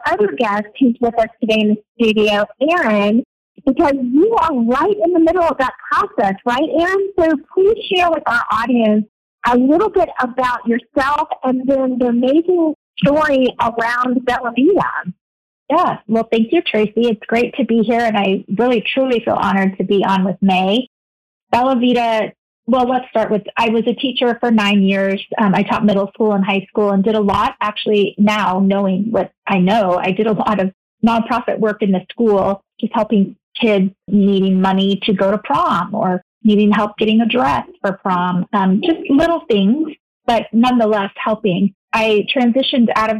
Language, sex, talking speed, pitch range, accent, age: English, female, 180 wpm, 200-255 Hz, American, 40-59